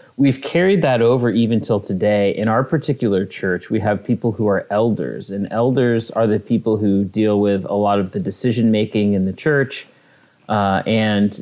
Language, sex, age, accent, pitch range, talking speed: English, male, 30-49, American, 100-115 Hz, 190 wpm